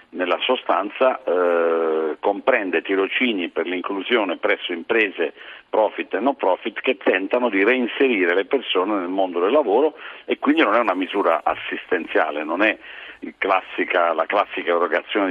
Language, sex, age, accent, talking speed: Italian, male, 50-69, native, 135 wpm